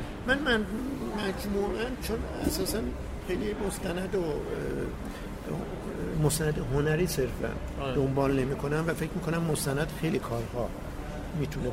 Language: Persian